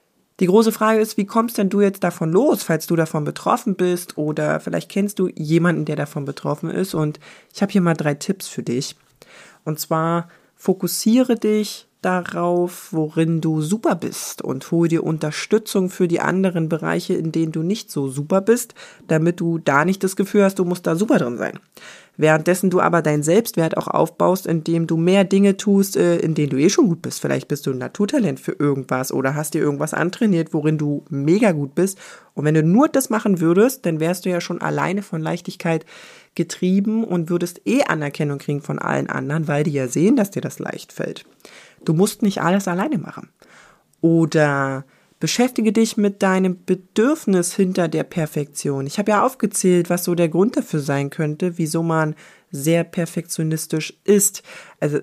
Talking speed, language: 190 wpm, German